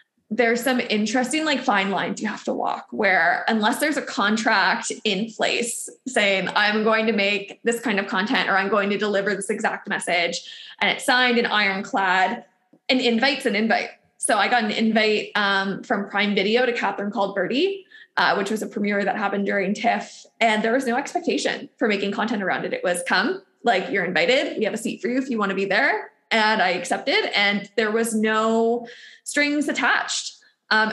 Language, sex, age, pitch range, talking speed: English, female, 20-39, 200-245 Hz, 200 wpm